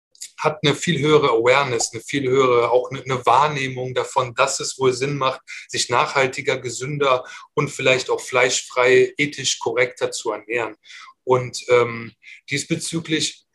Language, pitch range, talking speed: German, 130-160 Hz, 135 wpm